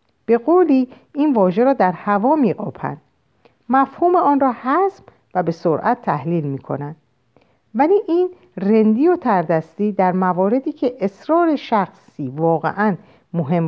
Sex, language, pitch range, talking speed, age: female, Persian, 165-250 Hz, 135 wpm, 50-69